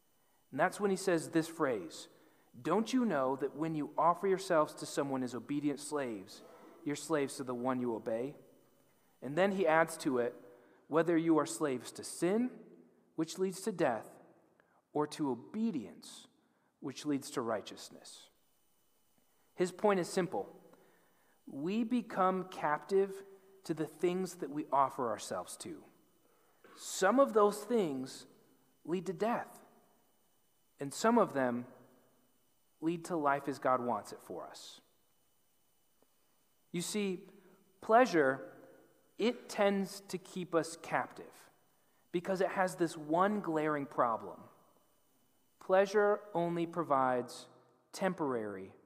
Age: 40-59